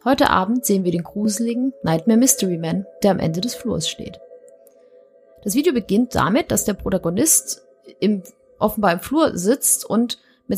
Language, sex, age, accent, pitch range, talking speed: German, female, 30-49, German, 190-245 Hz, 165 wpm